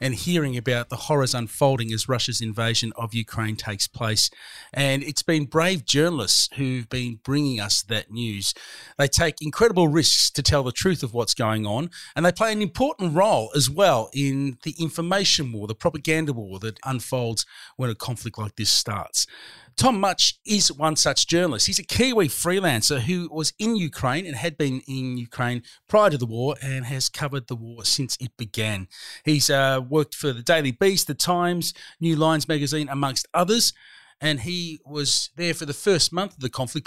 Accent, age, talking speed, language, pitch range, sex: Australian, 40-59, 185 wpm, English, 120-165 Hz, male